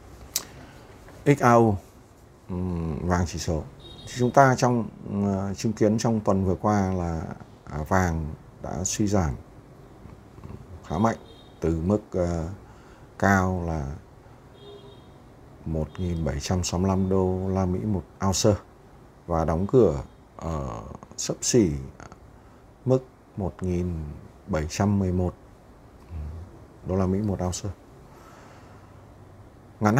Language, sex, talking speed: Vietnamese, male, 95 wpm